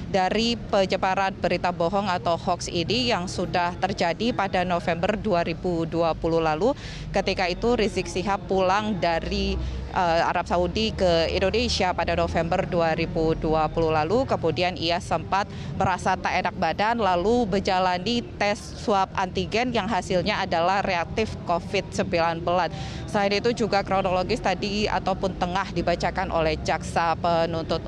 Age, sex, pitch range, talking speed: 20-39, female, 175-200 Hz, 125 wpm